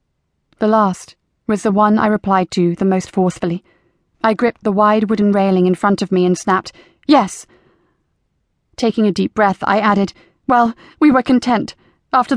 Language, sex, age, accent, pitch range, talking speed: English, female, 30-49, British, 195-235 Hz, 170 wpm